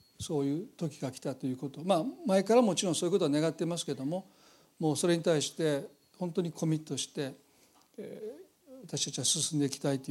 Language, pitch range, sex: Japanese, 145-185 Hz, male